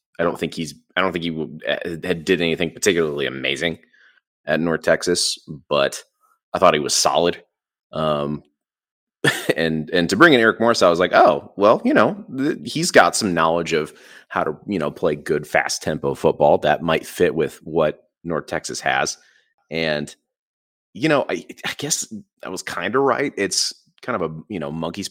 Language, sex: English, male